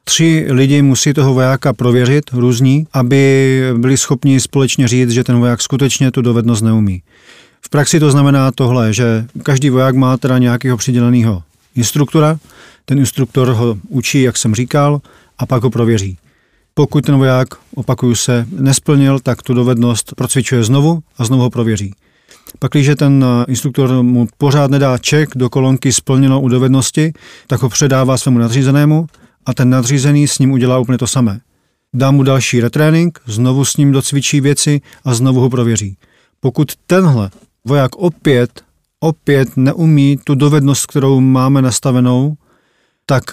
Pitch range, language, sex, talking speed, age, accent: 125-145 Hz, Czech, male, 150 wpm, 40-59, native